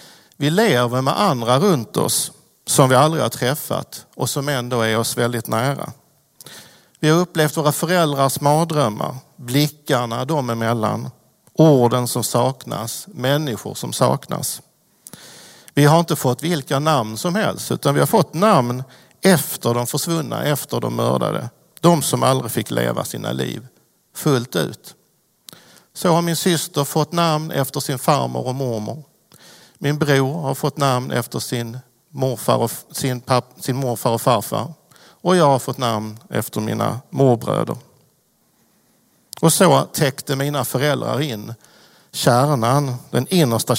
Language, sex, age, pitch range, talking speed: Swedish, male, 50-69, 120-155 Hz, 145 wpm